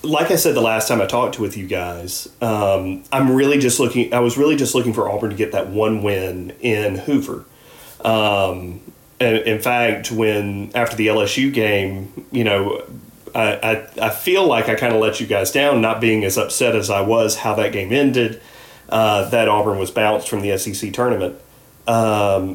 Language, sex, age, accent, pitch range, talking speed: English, male, 30-49, American, 100-120 Hz, 200 wpm